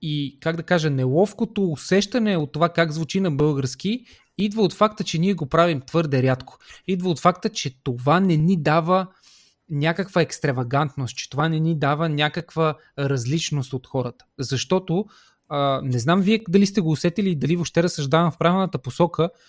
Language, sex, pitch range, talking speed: Bulgarian, male, 140-185 Hz, 170 wpm